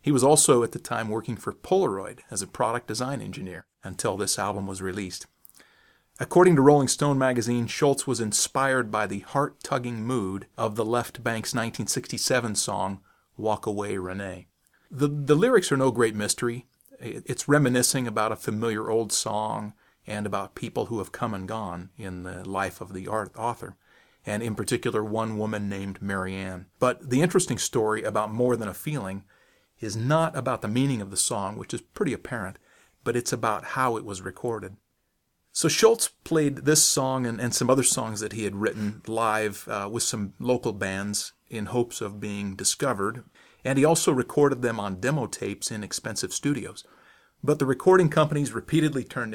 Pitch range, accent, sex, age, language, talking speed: 105-135 Hz, American, male, 40-59, English, 175 wpm